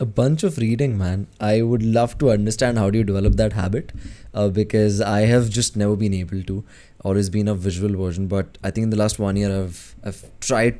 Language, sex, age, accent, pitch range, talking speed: English, male, 20-39, Indian, 100-120 Hz, 230 wpm